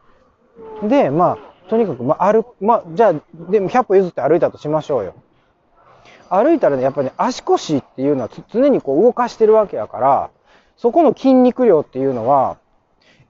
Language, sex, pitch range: Japanese, male, 190-300 Hz